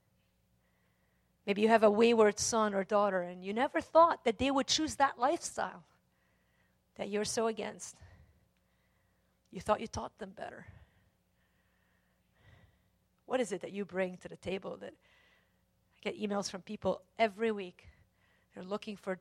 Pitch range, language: 185-275 Hz, English